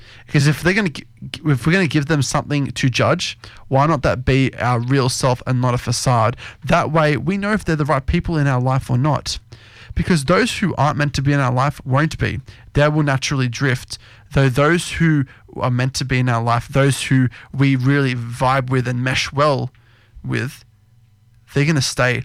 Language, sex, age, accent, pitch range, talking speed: English, male, 20-39, Australian, 115-140 Hz, 215 wpm